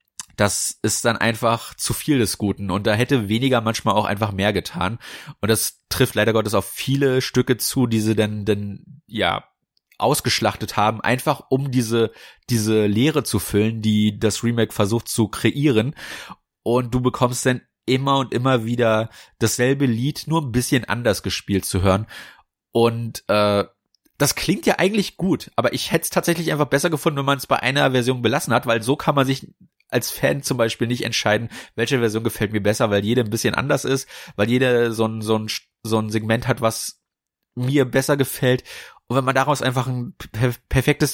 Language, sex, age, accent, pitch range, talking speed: German, male, 30-49, German, 110-130 Hz, 185 wpm